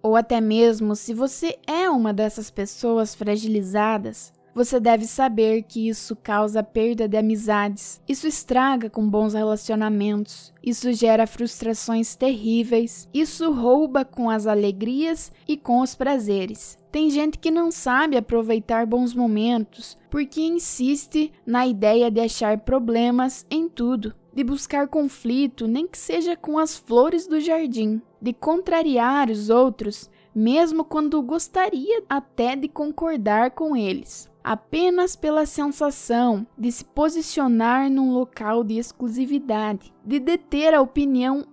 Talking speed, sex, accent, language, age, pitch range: 130 wpm, female, Brazilian, Portuguese, 10-29, 225-295 Hz